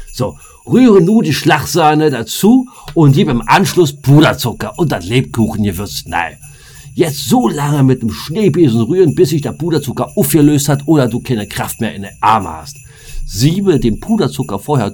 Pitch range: 105-145 Hz